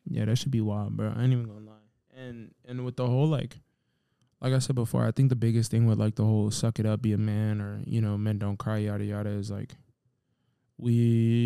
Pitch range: 110-125 Hz